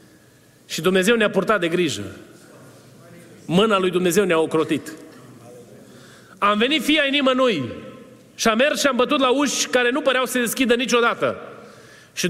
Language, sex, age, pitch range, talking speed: Romanian, male, 30-49, 185-275 Hz, 150 wpm